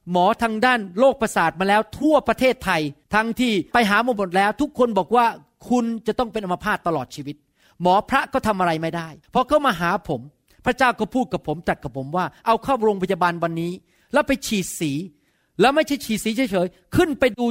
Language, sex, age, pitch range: Thai, male, 30-49, 180-250 Hz